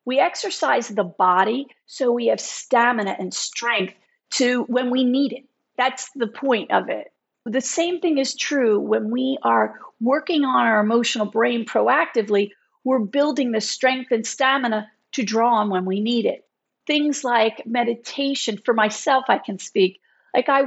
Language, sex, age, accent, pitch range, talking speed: English, female, 50-69, American, 215-280 Hz, 165 wpm